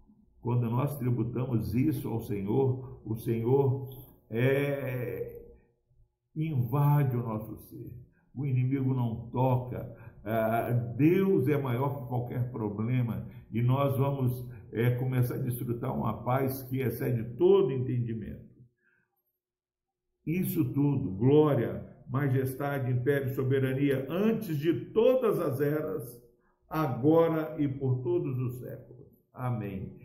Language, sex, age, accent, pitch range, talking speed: Portuguese, male, 60-79, Brazilian, 115-135 Hz, 110 wpm